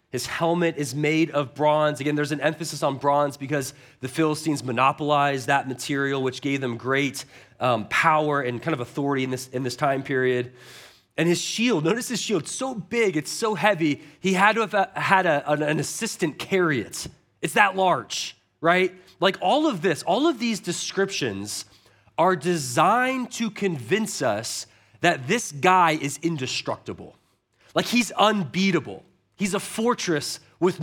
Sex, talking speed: male, 165 wpm